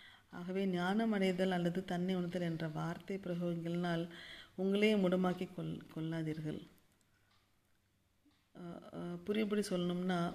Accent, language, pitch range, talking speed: native, Tamil, 165-195 Hz, 80 wpm